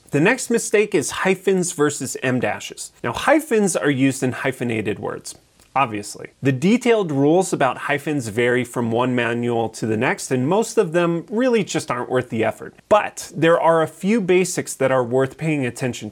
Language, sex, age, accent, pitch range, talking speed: English, male, 30-49, American, 125-175 Hz, 180 wpm